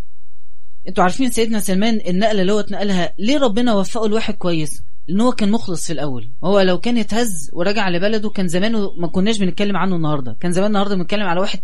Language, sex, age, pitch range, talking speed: English, female, 30-49, 180-225 Hz, 190 wpm